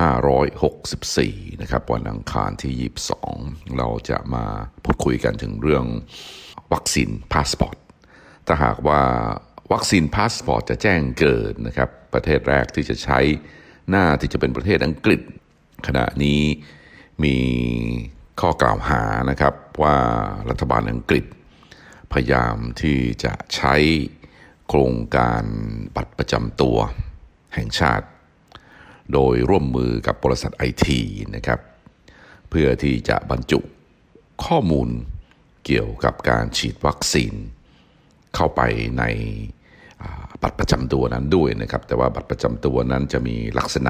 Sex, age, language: male, 60-79, Thai